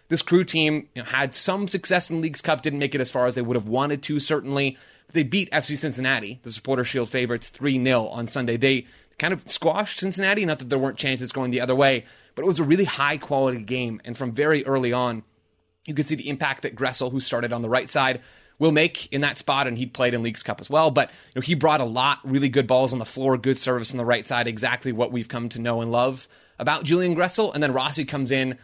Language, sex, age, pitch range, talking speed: English, male, 20-39, 125-150 Hz, 245 wpm